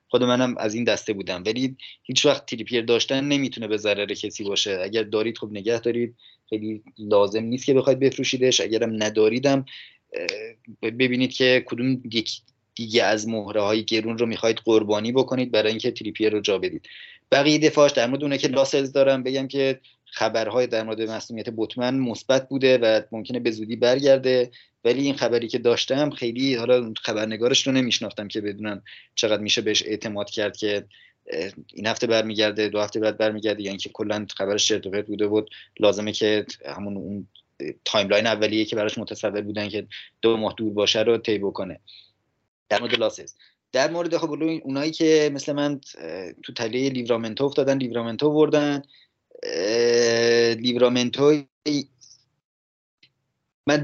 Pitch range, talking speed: 110-135 Hz, 150 wpm